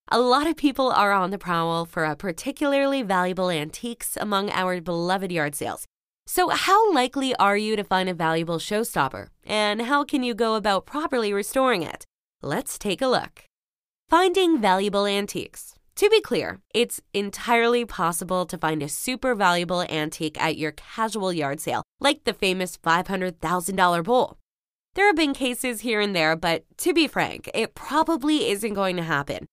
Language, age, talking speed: English, 20-39, 170 wpm